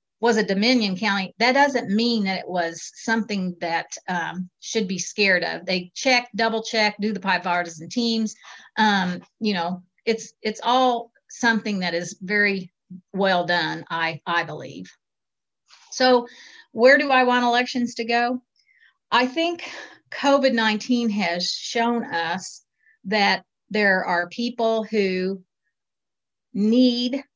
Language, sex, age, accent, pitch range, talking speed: English, female, 40-59, American, 185-235 Hz, 135 wpm